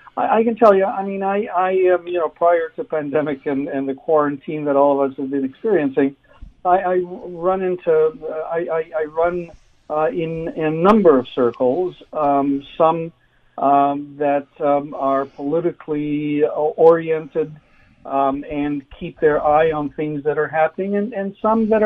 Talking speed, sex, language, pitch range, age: 170 wpm, male, English, 140-175 Hz, 60-79